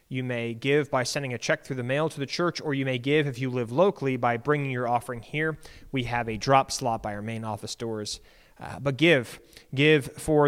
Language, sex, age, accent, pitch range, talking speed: English, male, 30-49, American, 120-145 Hz, 235 wpm